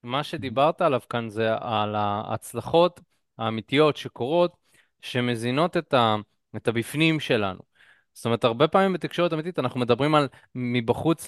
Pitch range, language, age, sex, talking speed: 120-170 Hz, Hebrew, 20-39, male, 135 wpm